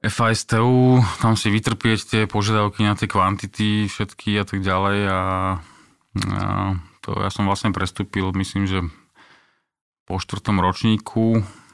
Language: Slovak